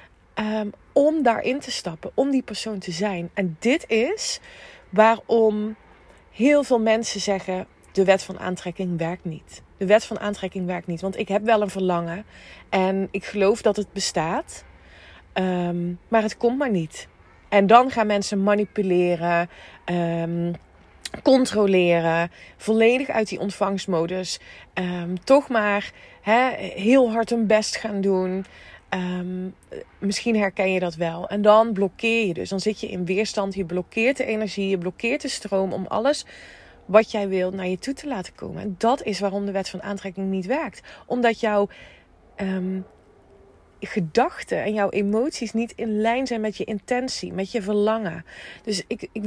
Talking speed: 155 wpm